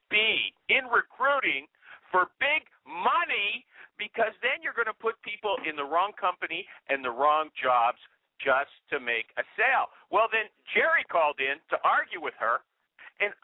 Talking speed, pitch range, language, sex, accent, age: 160 wpm, 205-290 Hz, English, male, American, 50-69